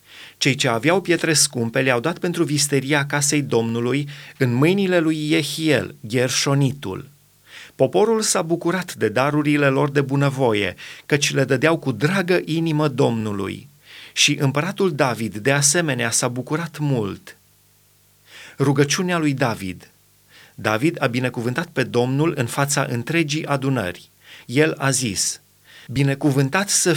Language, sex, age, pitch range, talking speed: Romanian, male, 30-49, 130-165 Hz, 125 wpm